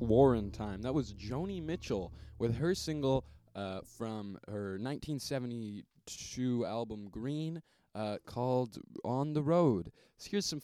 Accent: American